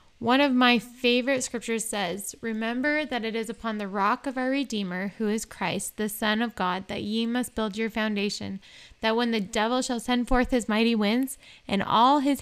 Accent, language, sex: American, English, female